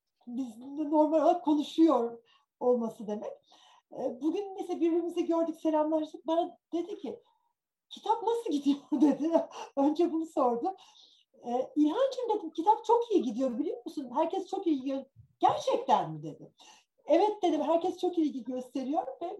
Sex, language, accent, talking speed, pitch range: female, Turkish, native, 135 wpm, 265-345 Hz